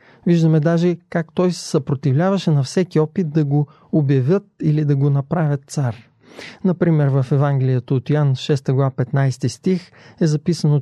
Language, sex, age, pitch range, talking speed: Bulgarian, male, 30-49, 135-165 Hz, 155 wpm